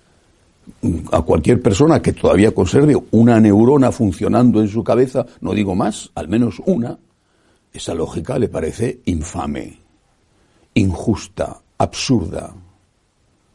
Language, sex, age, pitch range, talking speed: Spanish, male, 60-79, 95-125 Hz, 110 wpm